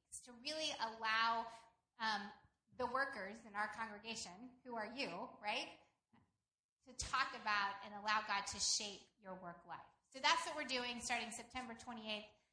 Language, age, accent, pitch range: English, 20-39, American, 225-260 Hz